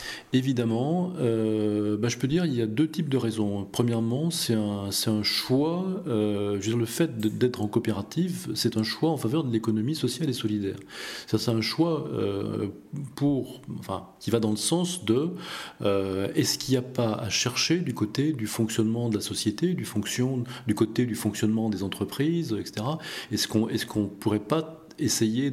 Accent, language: French, French